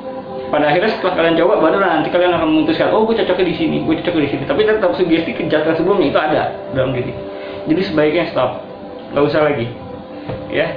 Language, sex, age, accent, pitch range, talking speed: Indonesian, male, 20-39, native, 135-185 Hz, 195 wpm